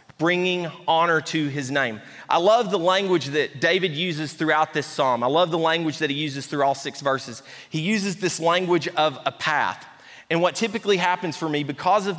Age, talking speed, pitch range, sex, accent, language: 30-49, 200 wpm, 165-230 Hz, male, American, English